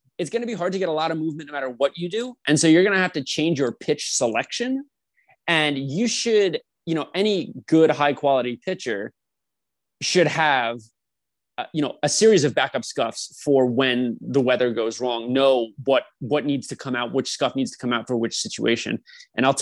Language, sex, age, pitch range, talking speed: English, male, 20-39, 130-165 Hz, 215 wpm